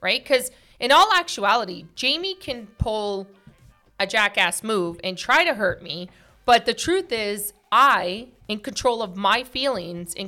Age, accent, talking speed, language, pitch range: 40-59, American, 160 wpm, English, 185-255 Hz